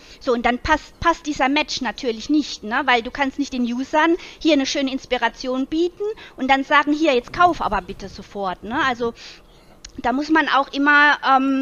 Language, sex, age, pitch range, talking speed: German, female, 40-59, 245-320 Hz, 195 wpm